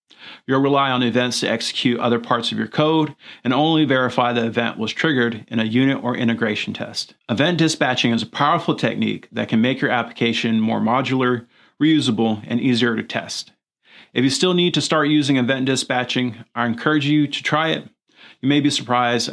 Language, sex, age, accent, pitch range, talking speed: English, male, 40-59, American, 115-145 Hz, 190 wpm